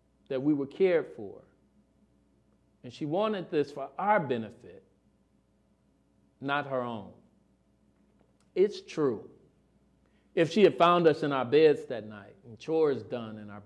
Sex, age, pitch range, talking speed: male, 40-59, 105-155 Hz, 140 wpm